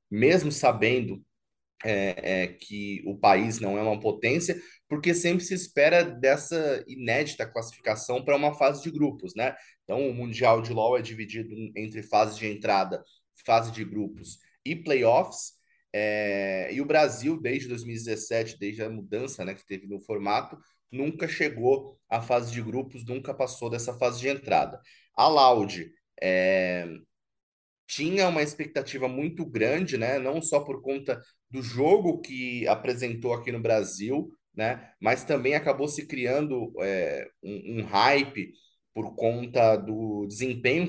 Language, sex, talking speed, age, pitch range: Portuguese, male, 145 wpm, 20-39, 110-135 Hz